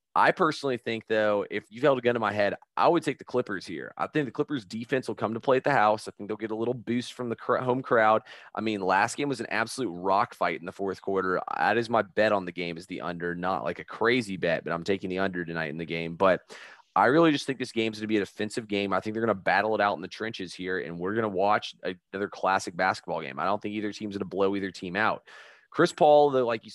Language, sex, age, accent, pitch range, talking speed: English, male, 30-49, American, 95-115 Hz, 295 wpm